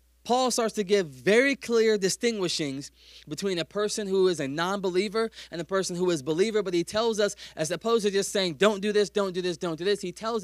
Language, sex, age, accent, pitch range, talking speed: English, male, 20-39, American, 155-205 Hz, 235 wpm